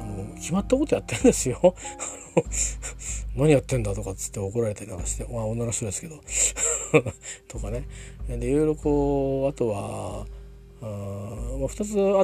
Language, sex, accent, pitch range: Japanese, male, native, 100-155 Hz